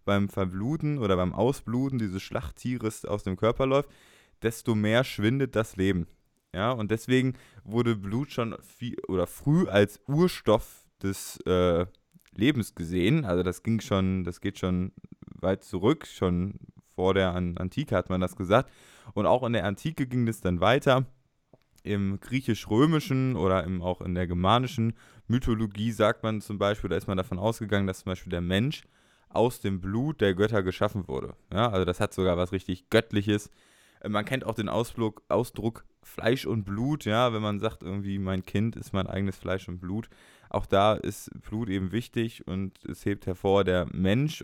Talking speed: 175 wpm